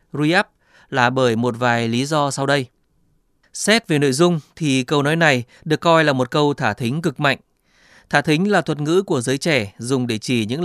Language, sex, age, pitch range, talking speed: Vietnamese, male, 20-39, 125-155 Hz, 215 wpm